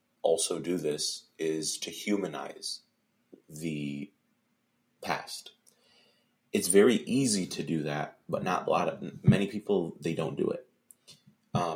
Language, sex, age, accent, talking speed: English, male, 30-49, American, 135 wpm